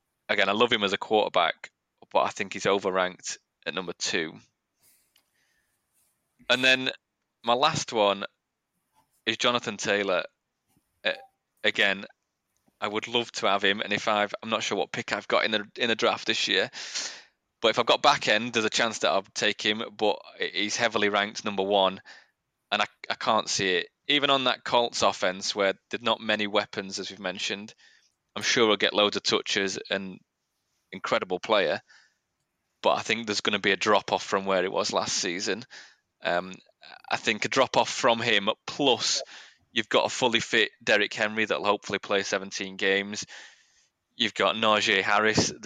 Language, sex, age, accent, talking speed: English, male, 20-39, British, 175 wpm